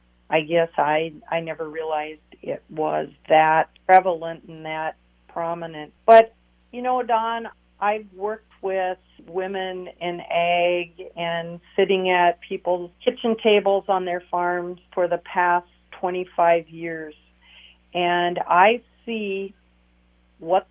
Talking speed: 120 wpm